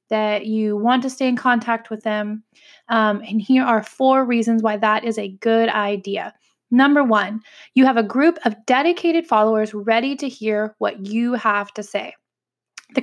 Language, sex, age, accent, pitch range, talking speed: English, female, 20-39, American, 220-265 Hz, 180 wpm